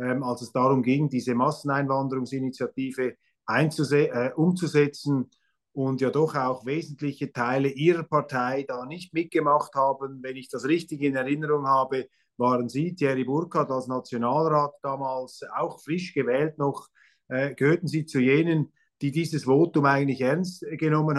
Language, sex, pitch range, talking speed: German, male, 135-160 Hz, 140 wpm